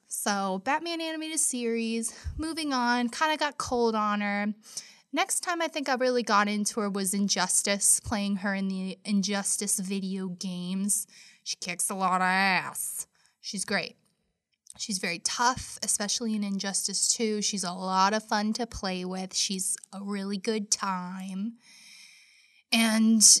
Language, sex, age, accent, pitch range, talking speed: English, female, 10-29, American, 200-310 Hz, 150 wpm